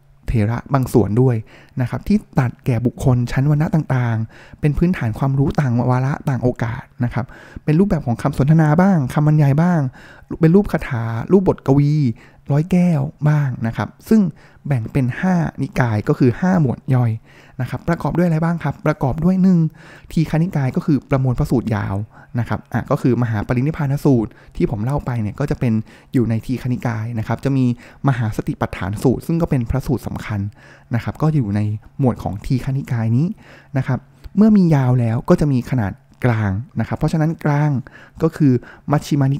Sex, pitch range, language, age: male, 120-150 Hz, Thai, 20-39